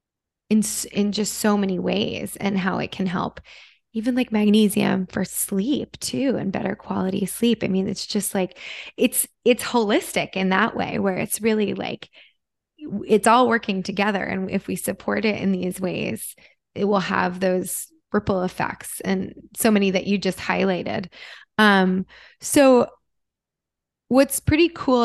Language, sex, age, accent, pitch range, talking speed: English, female, 20-39, American, 190-220 Hz, 160 wpm